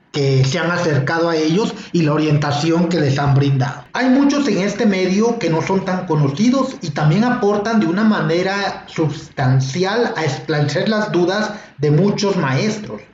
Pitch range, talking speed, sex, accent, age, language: 155-220 Hz, 170 wpm, male, Mexican, 40-59, Spanish